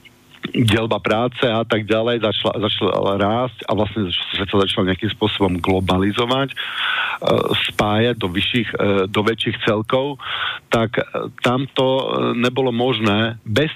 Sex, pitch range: male, 110-130 Hz